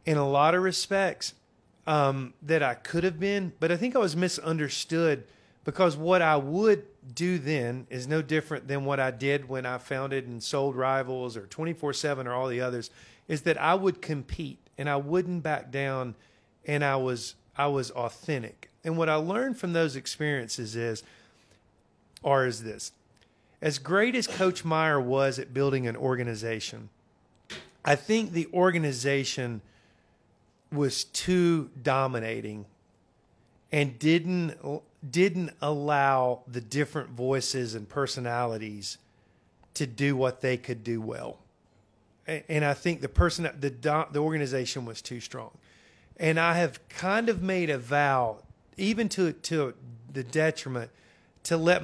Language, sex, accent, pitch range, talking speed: English, male, American, 125-160 Hz, 150 wpm